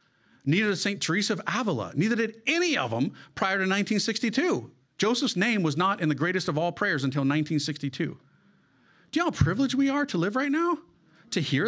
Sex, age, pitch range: male, 40-59, 150-215 Hz